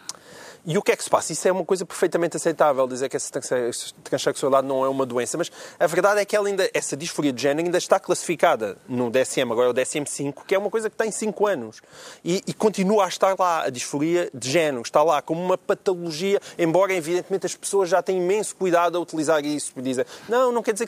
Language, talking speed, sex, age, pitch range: Portuguese, 225 wpm, male, 30-49, 145-205 Hz